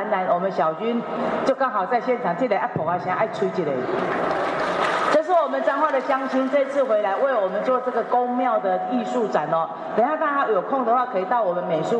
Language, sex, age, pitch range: Chinese, female, 40-59, 185-245 Hz